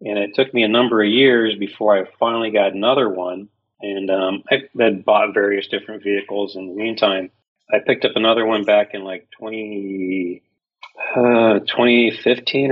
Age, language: 40-59, English